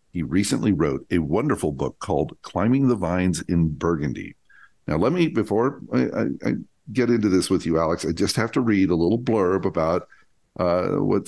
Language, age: English, 50-69